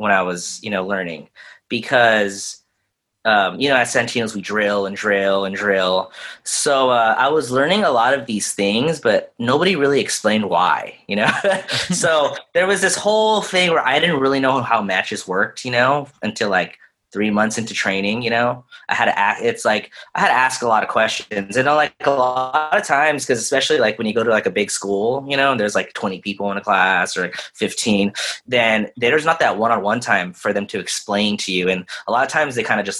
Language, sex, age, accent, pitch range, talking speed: English, male, 20-39, American, 100-155 Hz, 225 wpm